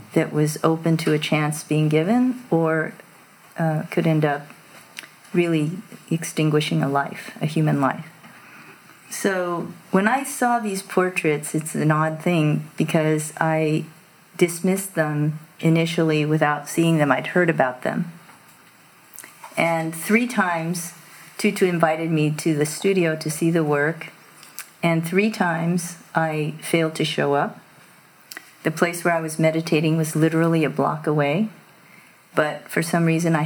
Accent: American